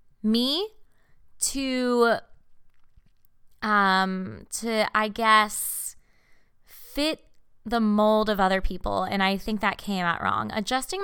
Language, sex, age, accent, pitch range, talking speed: English, female, 20-39, American, 190-260 Hz, 110 wpm